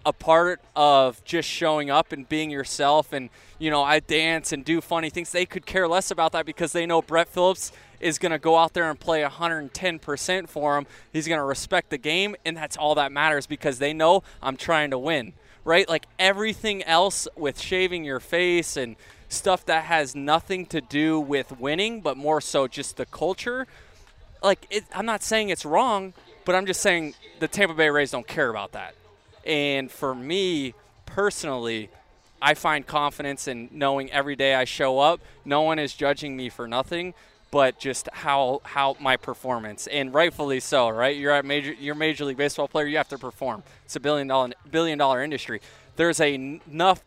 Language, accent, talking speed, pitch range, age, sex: English, American, 195 wpm, 140-170 Hz, 20-39, male